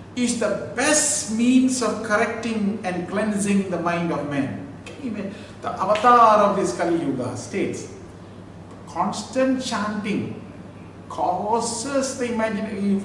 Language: English